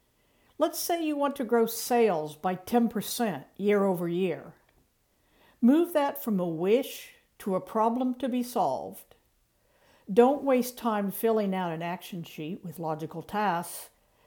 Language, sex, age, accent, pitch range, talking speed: English, female, 60-79, American, 175-245 Hz, 135 wpm